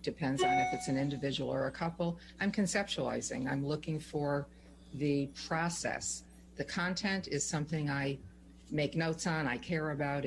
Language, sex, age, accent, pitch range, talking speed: English, female, 50-69, American, 135-155 Hz, 160 wpm